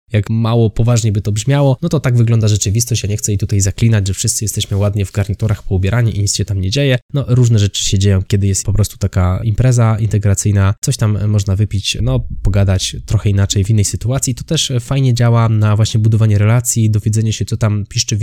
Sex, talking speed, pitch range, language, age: male, 220 wpm, 100-115 Hz, Polish, 20-39